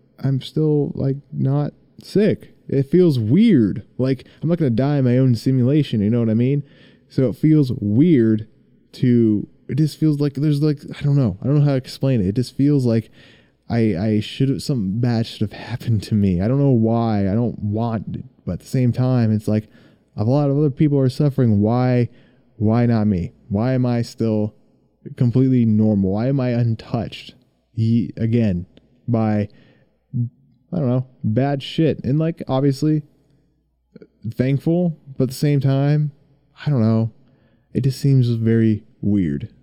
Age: 20-39